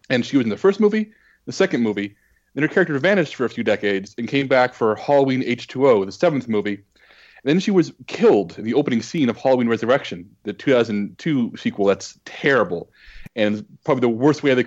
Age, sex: 30-49, male